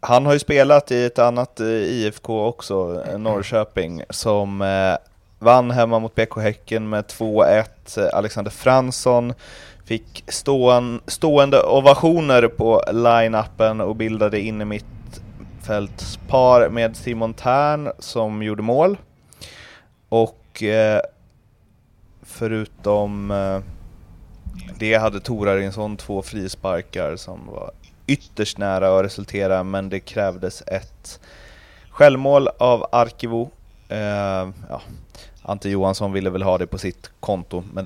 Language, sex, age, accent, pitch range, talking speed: Swedish, male, 30-49, native, 95-120 Hz, 110 wpm